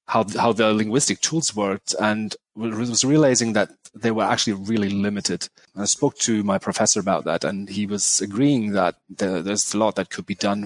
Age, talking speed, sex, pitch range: 30-49, 210 wpm, male, 100-120 Hz